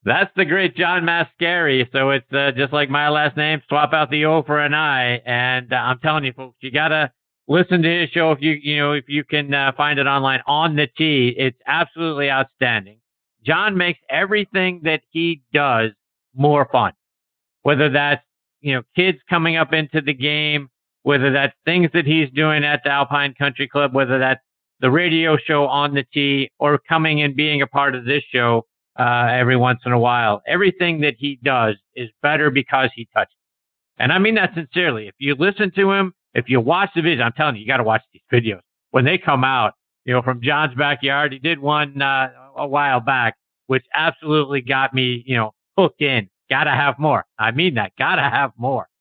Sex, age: male, 50-69